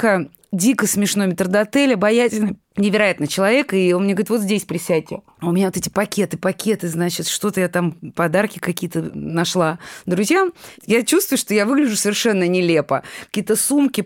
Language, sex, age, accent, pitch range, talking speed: Russian, female, 20-39, native, 190-245 Hz, 155 wpm